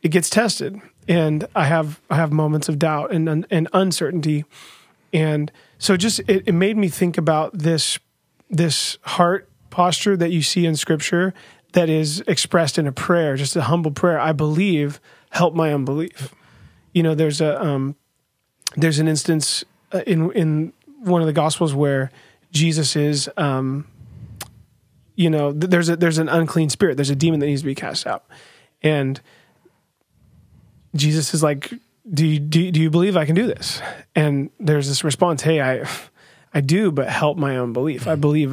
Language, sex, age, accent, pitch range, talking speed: English, male, 30-49, American, 145-170 Hz, 170 wpm